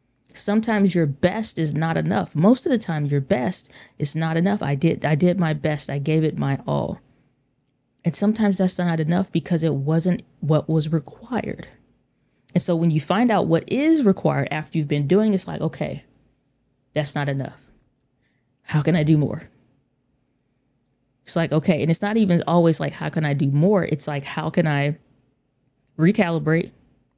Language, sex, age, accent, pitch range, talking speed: English, female, 20-39, American, 140-170 Hz, 180 wpm